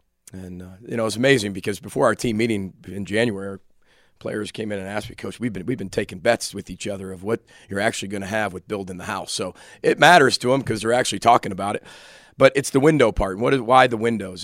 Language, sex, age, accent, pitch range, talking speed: English, male, 40-59, American, 100-115 Hz, 255 wpm